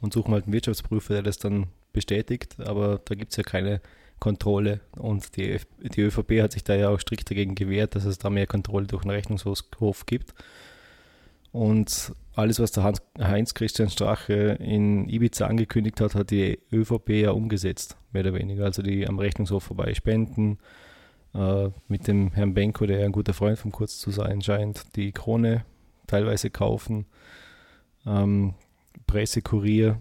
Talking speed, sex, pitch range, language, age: 170 wpm, male, 100-110 Hz, German, 20-39